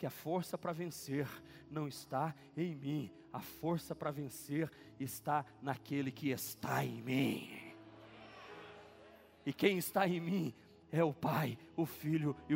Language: Portuguese